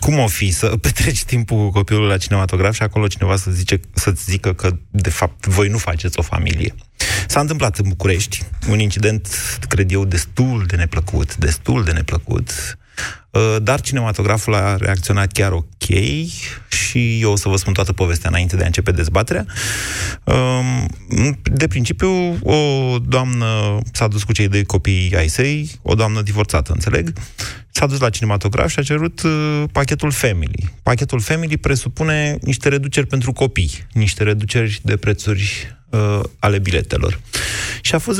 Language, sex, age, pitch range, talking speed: Romanian, male, 30-49, 95-130 Hz, 155 wpm